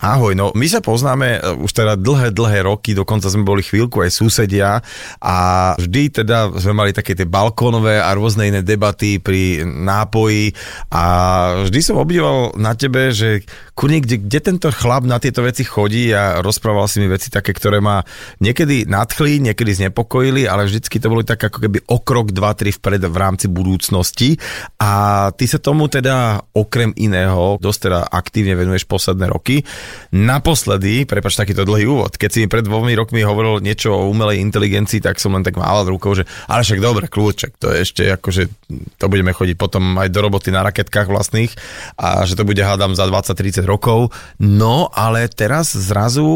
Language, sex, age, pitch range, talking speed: Slovak, male, 30-49, 95-115 Hz, 180 wpm